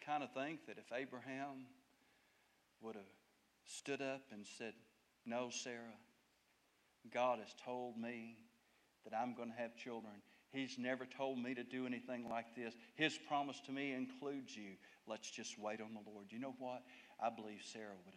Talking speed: 170 wpm